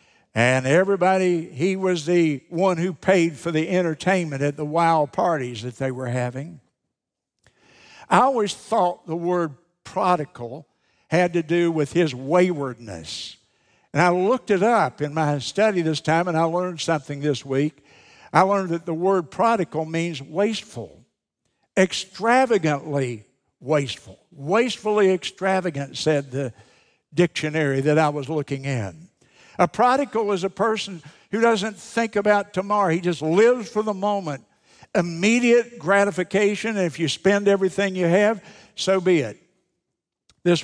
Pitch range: 150-195 Hz